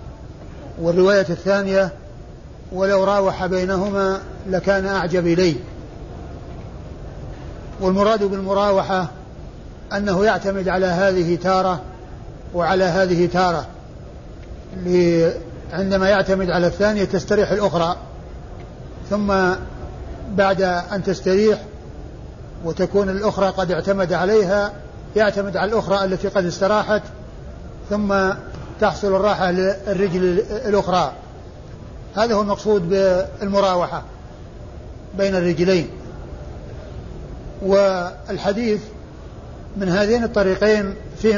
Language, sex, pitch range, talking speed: Arabic, male, 185-200 Hz, 80 wpm